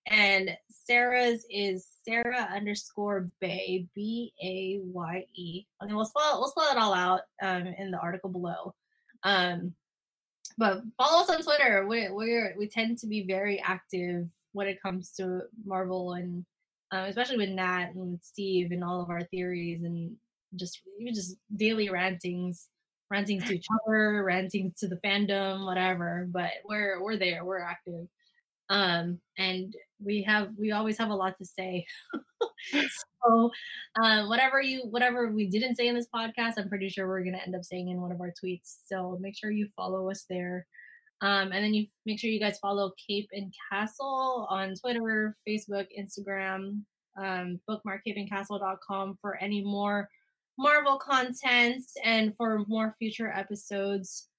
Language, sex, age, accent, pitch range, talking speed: English, female, 10-29, American, 185-220 Hz, 160 wpm